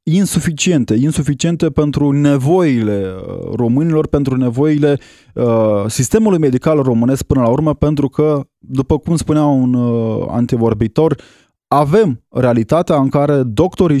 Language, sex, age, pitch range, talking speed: Romanian, male, 20-39, 115-145 Hz, 115 wpm